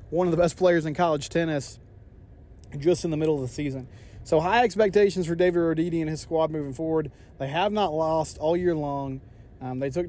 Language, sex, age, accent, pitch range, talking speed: English, male, 20-39, American, 135-175 Hz, 215 wpm